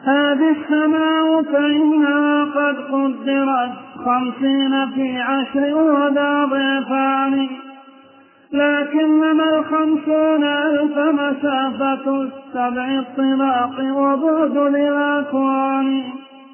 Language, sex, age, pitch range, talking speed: Arabic, male, 30-49, 270-295 Hz, 65 wpm